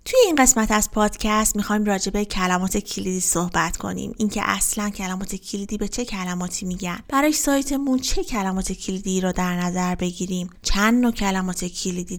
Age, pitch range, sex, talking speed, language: 20-39, 185-230 Hz, female, 160 wpm, Persian